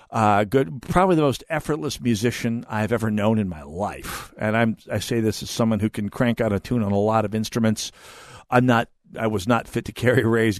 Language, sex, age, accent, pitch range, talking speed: English, male, 50-69, American, 110-135 Hz, 215 wpm